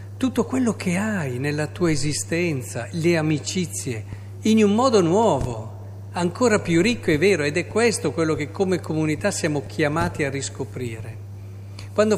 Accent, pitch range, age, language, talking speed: native, 105-170 Hz, 50-69, Italian, 150 wpm